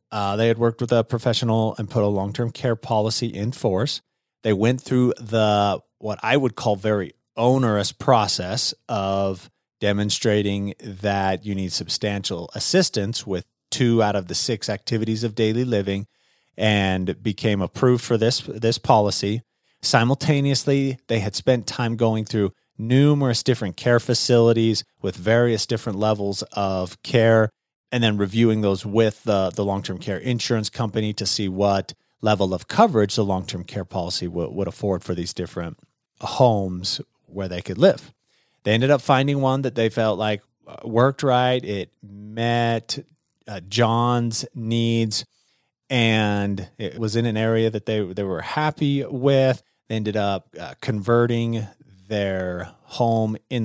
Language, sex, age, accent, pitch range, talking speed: English, male, 30-49, American, 100-120 Hz, 150 wpm